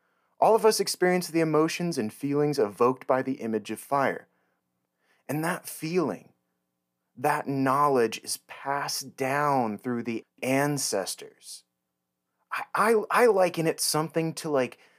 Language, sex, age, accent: English, male, 30-49, American